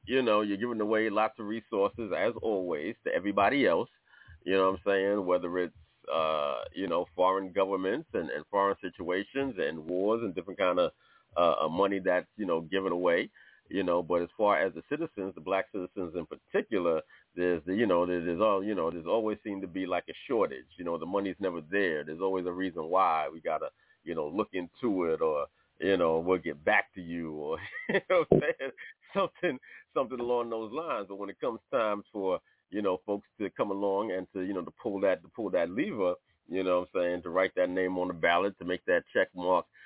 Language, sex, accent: English, male, American